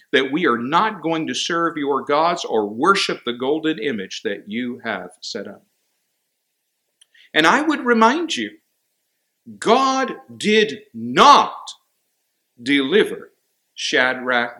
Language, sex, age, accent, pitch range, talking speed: English, male, 50-69, American, 120-170 Hz, 120 wpm